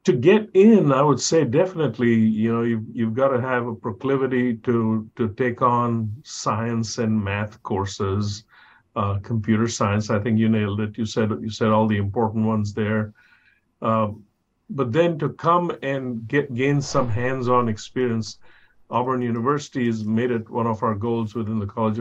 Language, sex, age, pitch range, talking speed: English, male, 50-69, 110-125 Hz, 175 wpm